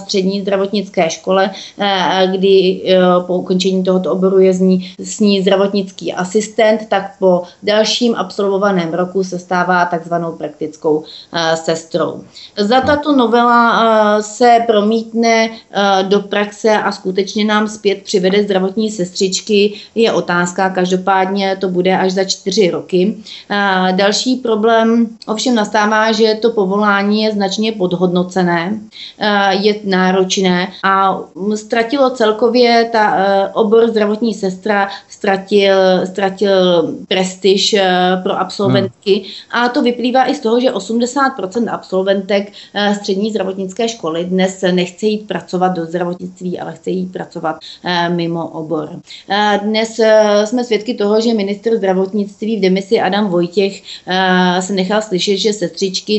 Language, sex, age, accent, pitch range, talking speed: Czech, female, 30-49, native, 185-215 Hz, 115 wpm